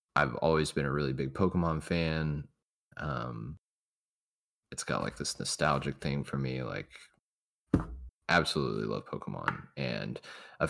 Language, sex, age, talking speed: English, male, 20-39, 130 wpm